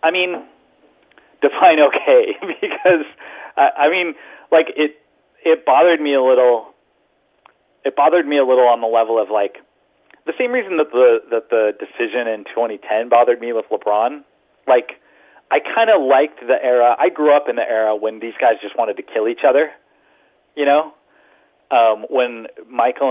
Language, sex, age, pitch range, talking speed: English, male, 40-59, 115-175 Hz, 170 wpm